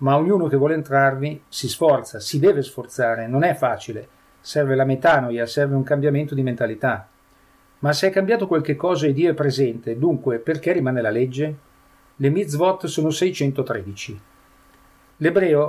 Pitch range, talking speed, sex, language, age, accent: 125-150 Hz, 155 wpm, male, Italian, 40-59, native